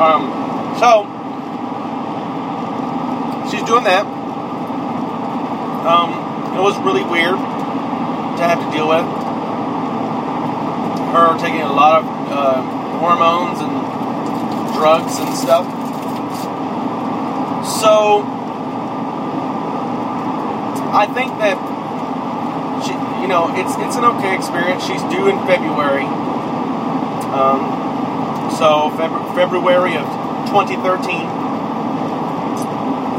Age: 30-49